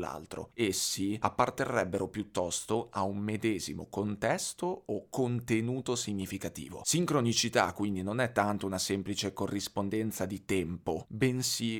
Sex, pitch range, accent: male, 100-120 Hz, native